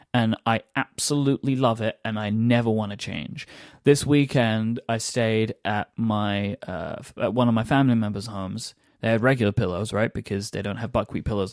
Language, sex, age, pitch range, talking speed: English, male, 20-39, 110-140 Hz, 185 wpm